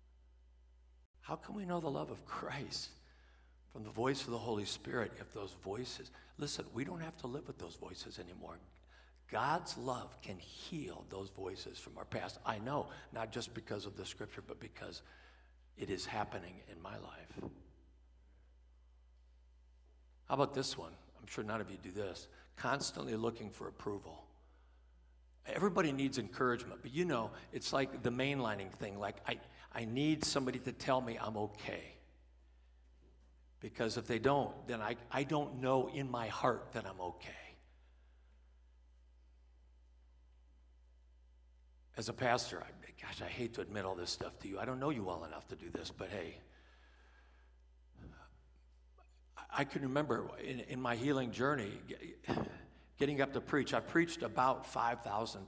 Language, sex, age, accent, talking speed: English, male, 60-79, American, 155 wpm